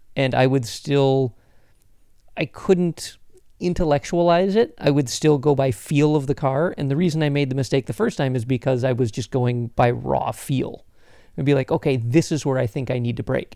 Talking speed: 220 wpm